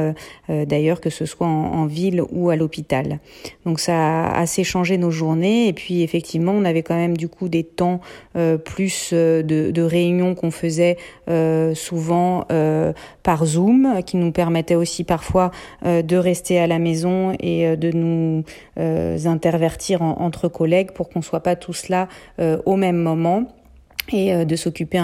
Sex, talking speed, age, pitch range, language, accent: female, 175 wpm, 40-59, 165-190 Hz, French, French